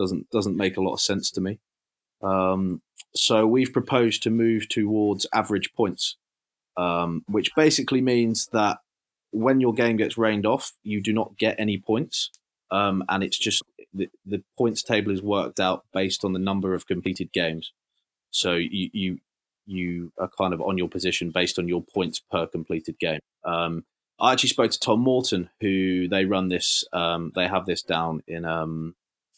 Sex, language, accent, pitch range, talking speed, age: male, English, British, 90-120 Hz, 180 wpm, 20-39